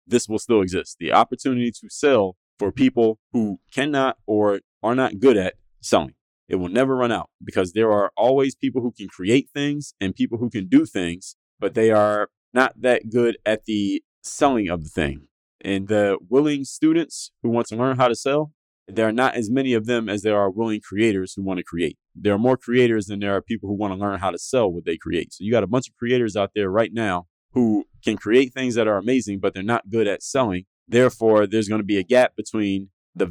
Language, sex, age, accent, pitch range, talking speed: English, male, 20-39, American, 100-125 Hz, 230 wpm